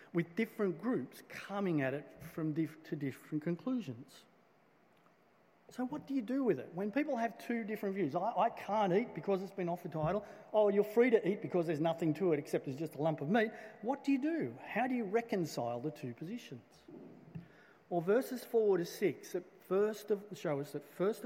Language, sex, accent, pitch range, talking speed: English, male, Australian, 150-210 Hz, 210 wpm